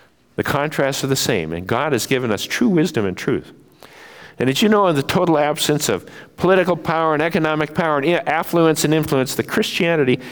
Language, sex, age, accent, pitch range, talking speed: English, male, 50-69, American, 100-150 Hz, 200 wpm